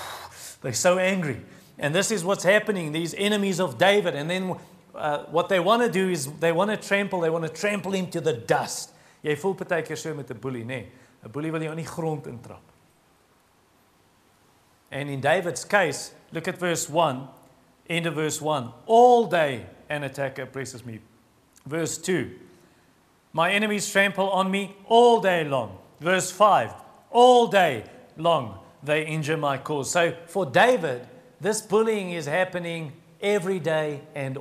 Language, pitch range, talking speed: English, 140-185 Hz, 150 wpm